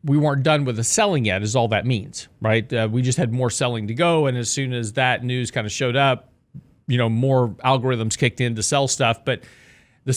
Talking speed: 240 wpm